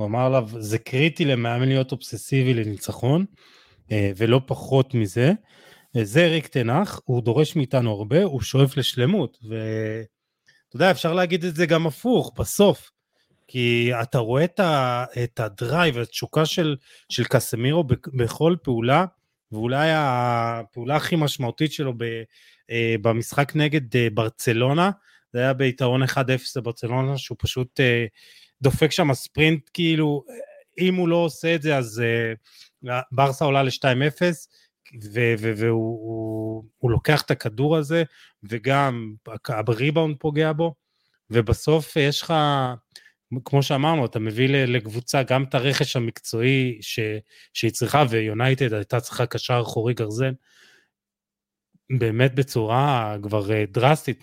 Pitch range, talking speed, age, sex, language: 115-150 Hz, 115 wpm, 30-49, male, Hebrew